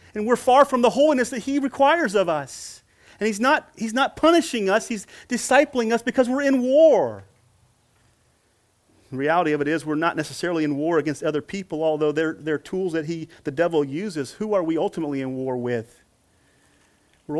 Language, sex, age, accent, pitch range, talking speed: English, male, 40-59, American, 140-195 Hz, 190 wpm